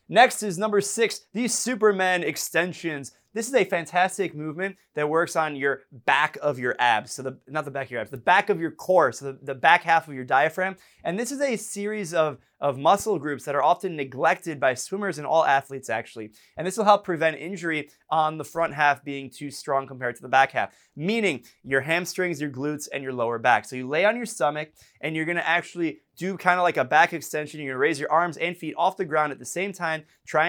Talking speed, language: 240 wpm, English